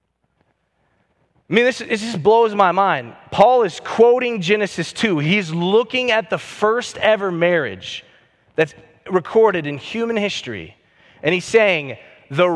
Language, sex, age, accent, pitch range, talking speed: English, male, 30-49, American, 160-225 Hz, 140 wpm